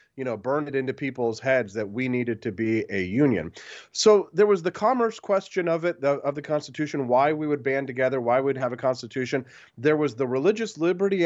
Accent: American